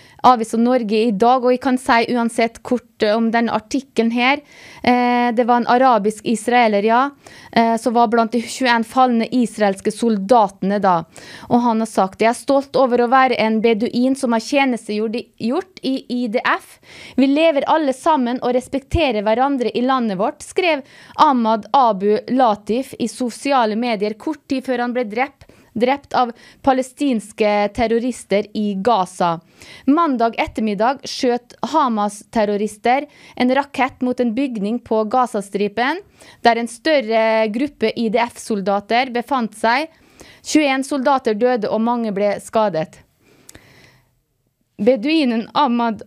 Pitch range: 220-260 Hz